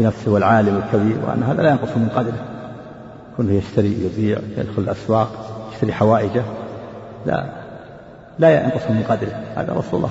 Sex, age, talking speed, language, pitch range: male, 50-69, 140 wpm, Arabic, 110-125 Hz